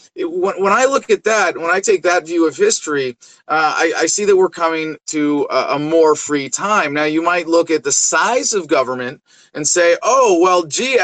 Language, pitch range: English, 150-220 Hz